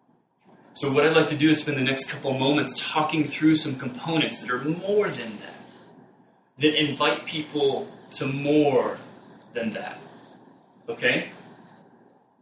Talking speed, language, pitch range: 140 wpm, English, 125-155 Hz